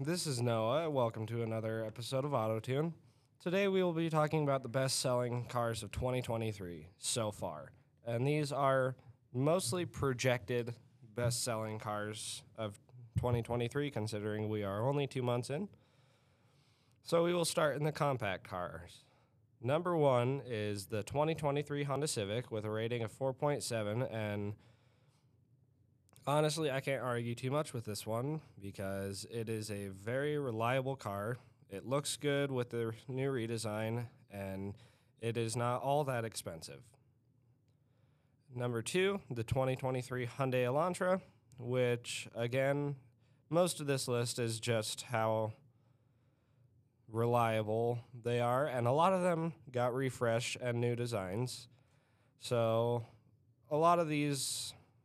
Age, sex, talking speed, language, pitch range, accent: 20-39, male, 135 wpm, English, 115-135 Hz, American